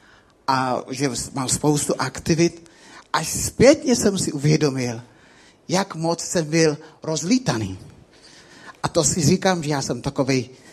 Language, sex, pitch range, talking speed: Czech, male, 140-180 Hz, 130 wpm